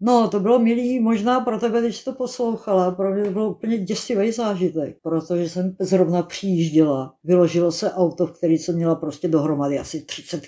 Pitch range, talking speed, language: 165-195 Hz, 190 wpm, Czech